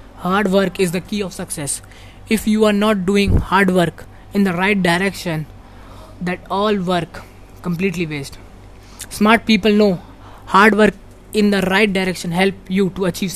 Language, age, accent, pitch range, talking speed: Hindi, 20-39, native, 155-200 Hz, 160 wpm